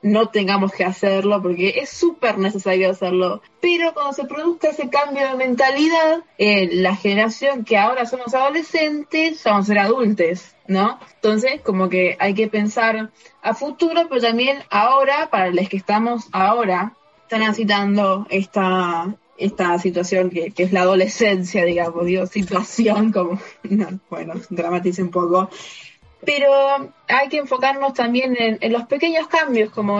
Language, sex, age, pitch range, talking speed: Spanish, female, 20-39, 195-260 Hz, 150 wpm